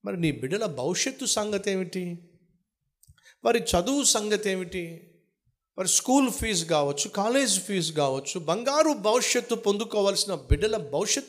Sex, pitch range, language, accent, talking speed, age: male, 150-210 Hz, Telugu, native, 90 wpm, 50-69